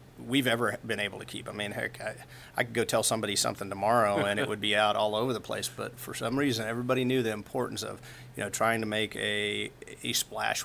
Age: 40-59